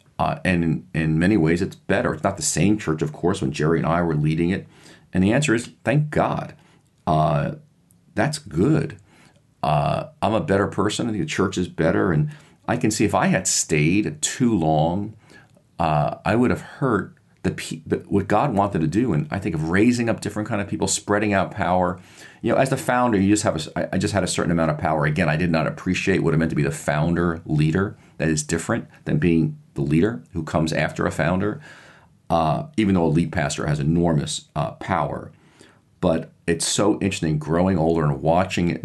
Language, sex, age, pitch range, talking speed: English, male, 40-59, 75-95 Hz, 215 wpm